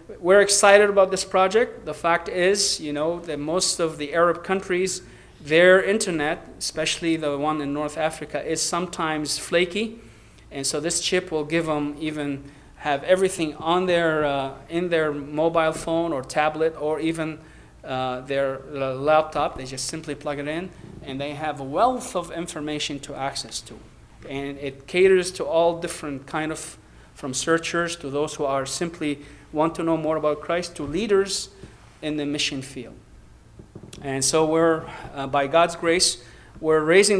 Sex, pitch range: male, 140-175 Hz